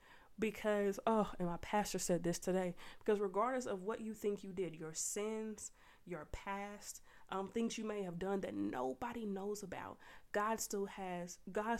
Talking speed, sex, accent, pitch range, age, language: 175 wpm, female, American, 185-220 Hz, 30-49, English